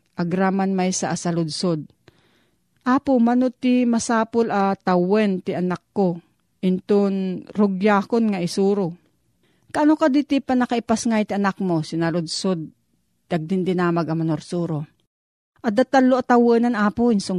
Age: 40-59